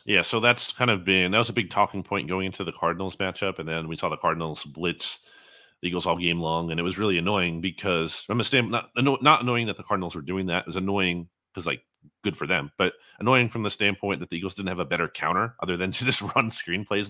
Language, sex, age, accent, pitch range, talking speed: English, male, 30-49, American, 85-115 Hz, 270 wpm